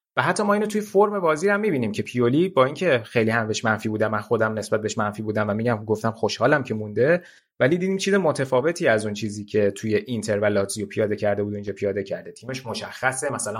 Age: 30-49